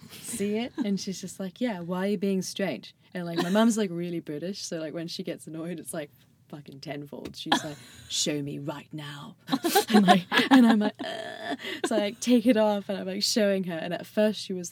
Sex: female